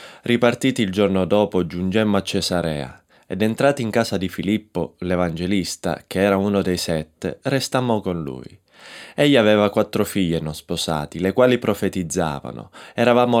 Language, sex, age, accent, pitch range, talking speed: Italian, male, 20-39, native, 90-120 Hz, 145 wpm